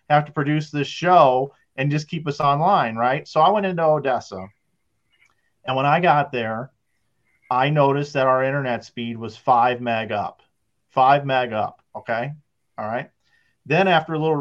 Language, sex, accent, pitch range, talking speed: English, male, American, 115-150 Hz, 170 wpm